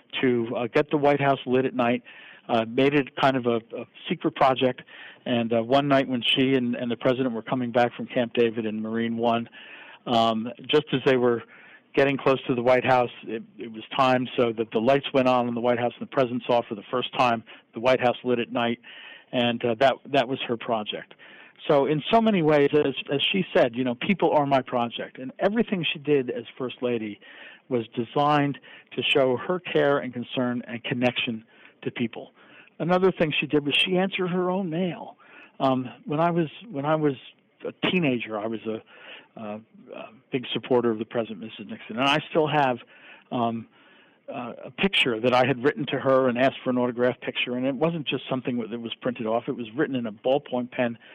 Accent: American